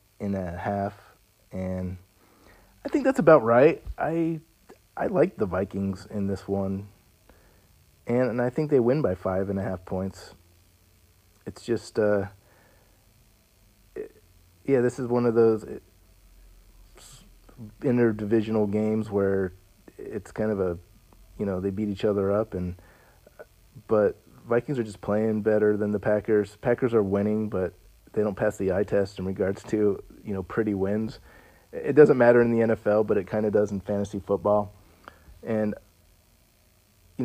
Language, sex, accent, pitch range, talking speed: English, male, American, 95-110 Hz, 155 wpm